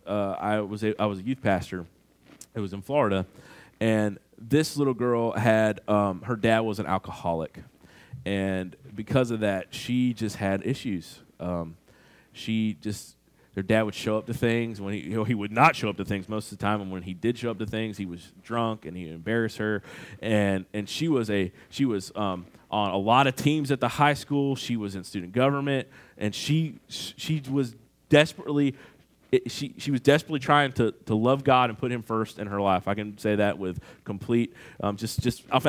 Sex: male